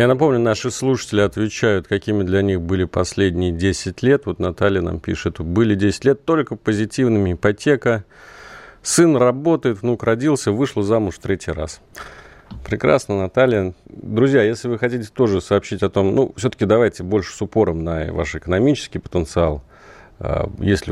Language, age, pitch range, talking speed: Russian, 40-59, 90-120 Hz, 150 wpm